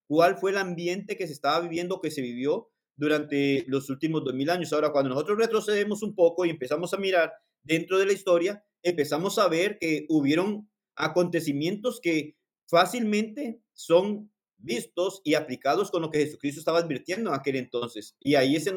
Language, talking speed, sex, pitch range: Spanish, 180 wpm, male, 150-195 Hz